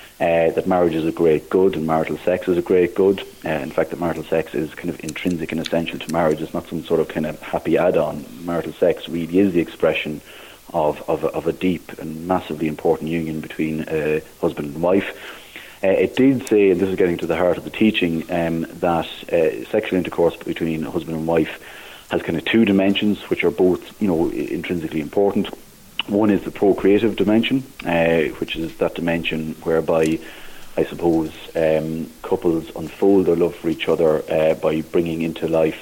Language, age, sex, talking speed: English, 40-59, male, 200 wpm